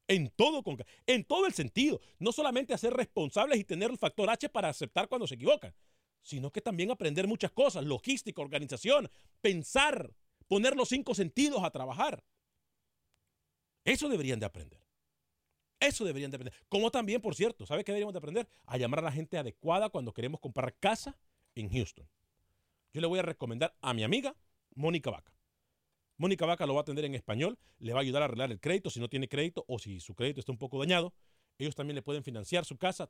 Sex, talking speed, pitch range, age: male, 200 wpm, 130-195 Hz, 40-59